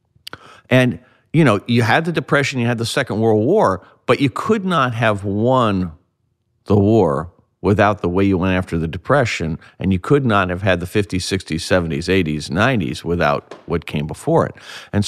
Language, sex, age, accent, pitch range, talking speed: English, male, 50-69, American, 90-125 Hz, 185 wpm